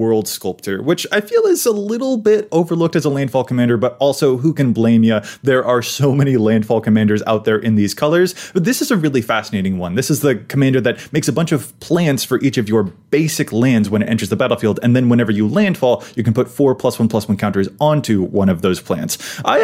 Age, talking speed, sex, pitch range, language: 20-39, 240 wpm, male, 110-155 Hz, English